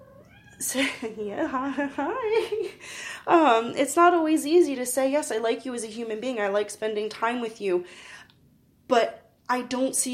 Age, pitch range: 20-39, 205-265 Hz